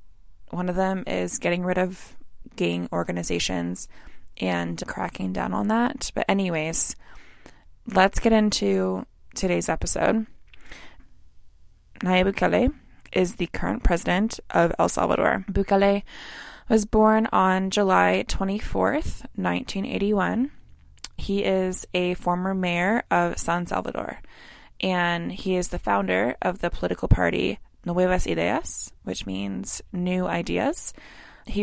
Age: 20-39